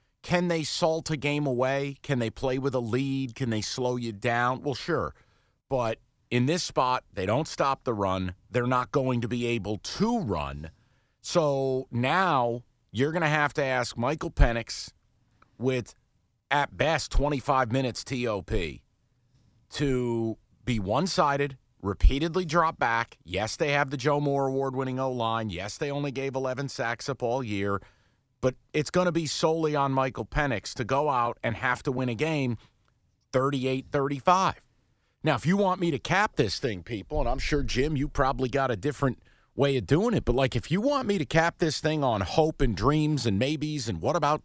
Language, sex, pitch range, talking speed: English, male, 120-150 Hz, 185 wpm